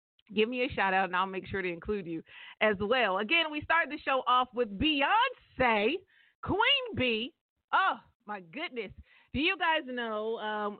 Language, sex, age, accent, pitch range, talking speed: English, female, 40-59, American, 195-245 Hz, 180 wpm